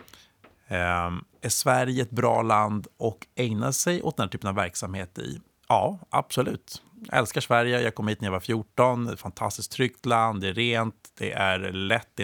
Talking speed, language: 195 wpm, Swedish